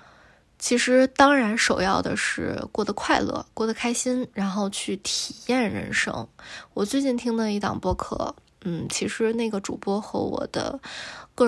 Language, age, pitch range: Chinese, 20-39, 190-245 Hz